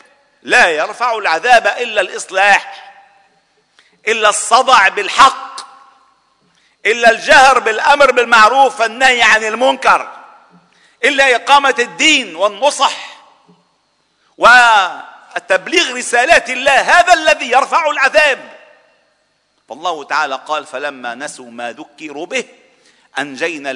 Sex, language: male, Arabic